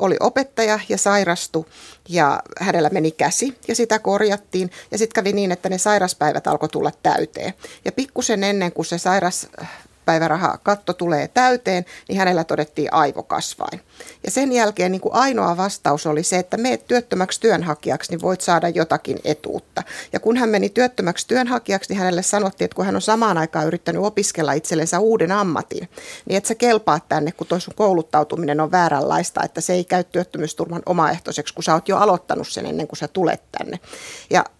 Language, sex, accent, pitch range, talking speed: Finnish, female, native, 165-205 Hz, 170 wpm